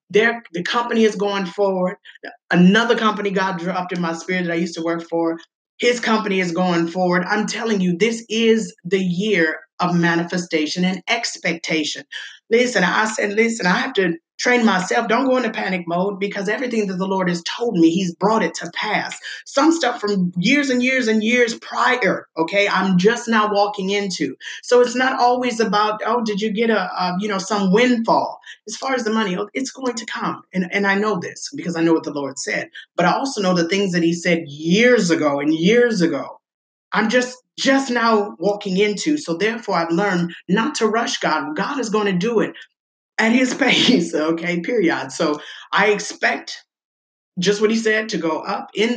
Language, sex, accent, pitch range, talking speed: English, female, American, 180-235 Hz, 200 wpm